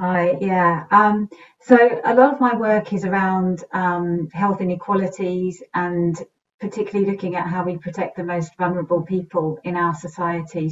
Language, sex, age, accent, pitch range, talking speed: English, female, 40-59, British, 170-185 Hz, 155 wpm